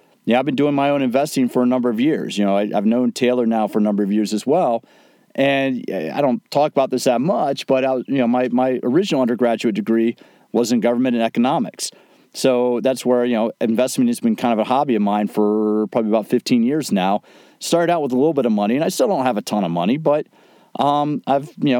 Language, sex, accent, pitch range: English, male, American, 120-155 Hz